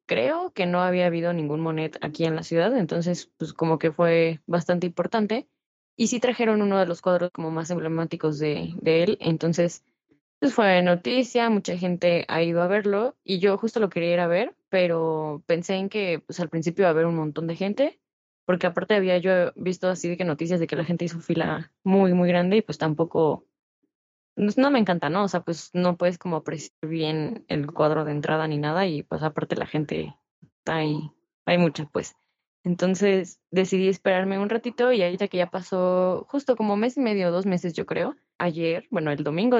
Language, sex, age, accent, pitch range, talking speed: Spanish, female, 10-29, Mexican, 165-200 Hz, 205 wpm